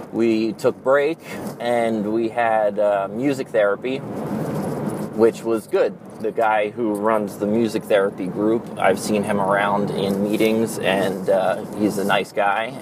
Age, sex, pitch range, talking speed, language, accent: 20-39, male, 100-110 Hz, 150 wpm, English, American